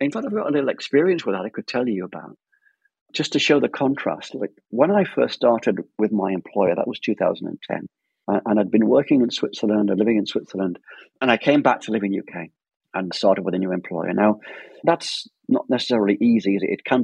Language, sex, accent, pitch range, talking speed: English, male, British, 95-125 Hz, 220 wpm